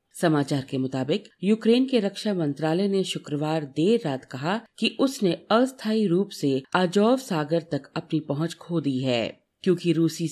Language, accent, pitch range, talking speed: Hindi, native, 155-205 Hz, 155 wpm